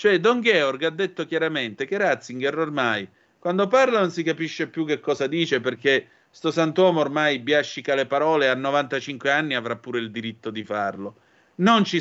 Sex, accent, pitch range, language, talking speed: male, native, 130-175 Hz, Italian, 185 wpm